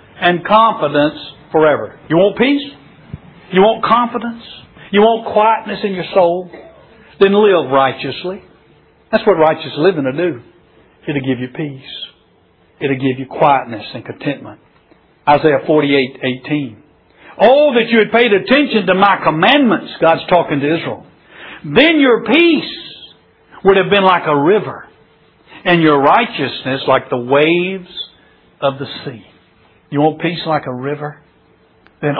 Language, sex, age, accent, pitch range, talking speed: English, male, 60-79, American, 135-190 Hz, 145 wpm